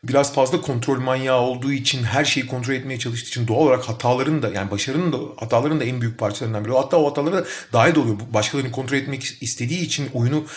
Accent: native